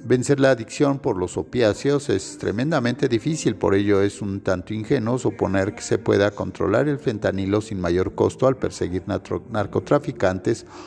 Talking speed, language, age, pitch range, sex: 160 wpm, Spanish, 50-69, 95-135 Hz, male